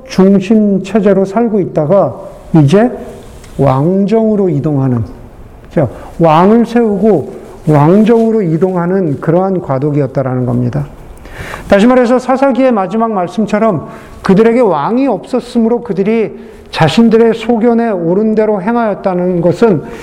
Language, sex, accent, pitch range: Korean, male, native, 175-230 Hz